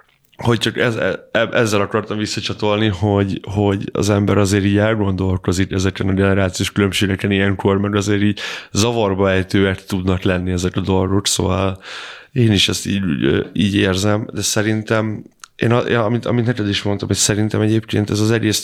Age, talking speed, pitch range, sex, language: 20-39, 160 wpm, 95-105 Hz, male, Hungarian